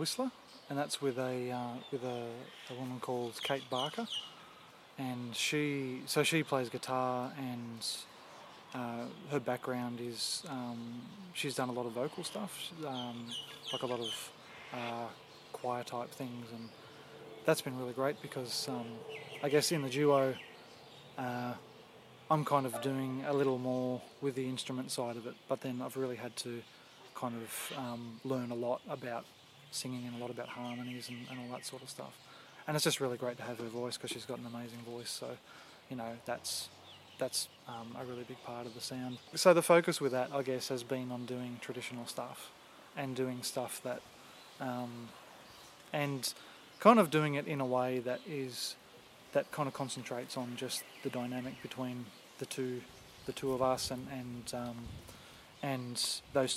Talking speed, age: 180 wpm, 20-39